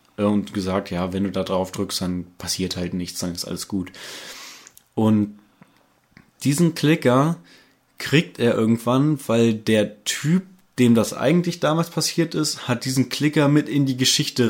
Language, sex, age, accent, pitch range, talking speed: German, male, 20-39, German, 110-135 Hz, 155 wpm